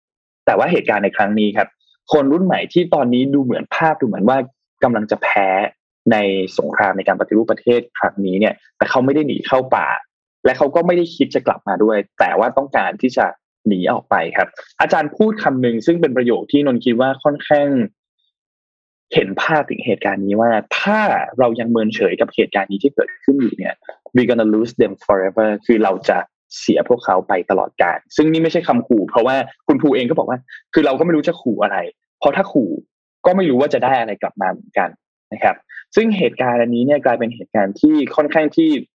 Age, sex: 20-39, male